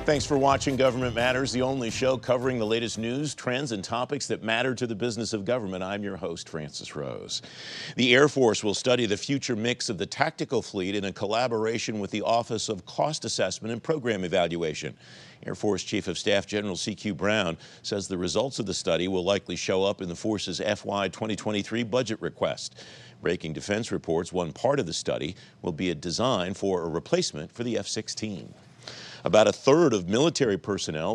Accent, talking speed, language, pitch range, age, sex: American, 195 wpm, English, 95-125 Hz, 50-69, male